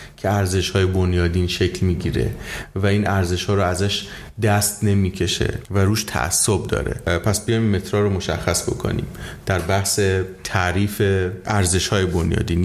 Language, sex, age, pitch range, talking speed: Persian, male, 30-49, 95-110 Hz, 145 wpm